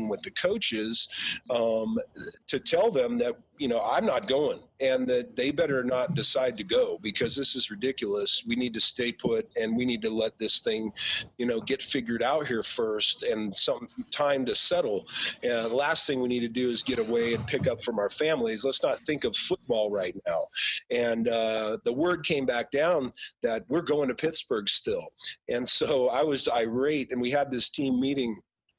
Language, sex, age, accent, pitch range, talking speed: English, male, 40-59, American, 120-170 Hz, 200 wpm